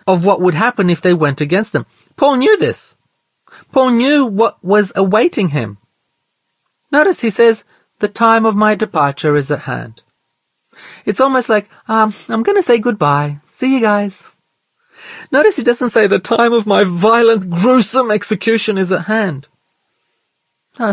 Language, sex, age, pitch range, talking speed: English, male, 30-49, 175-235 Hz, 160 wpm